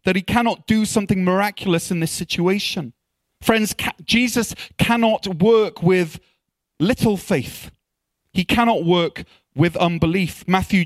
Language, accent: English, British